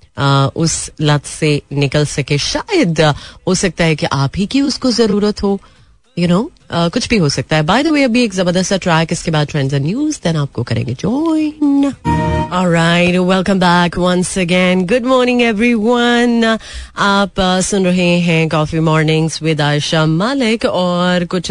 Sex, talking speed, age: female, 110 wpm, 30-49